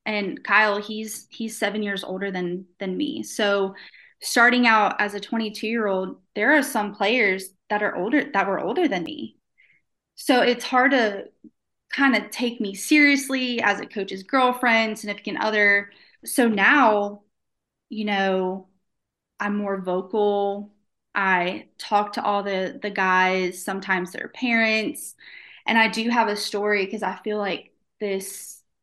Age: 20-39